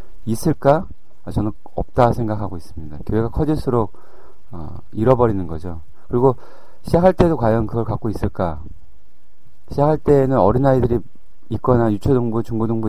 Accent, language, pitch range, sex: native, Korean, 100-135 Hz, male